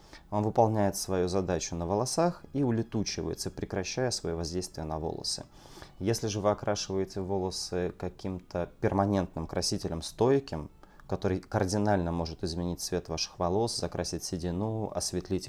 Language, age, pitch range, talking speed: Russian, 30-49, 90-110 Hz, 120 wpm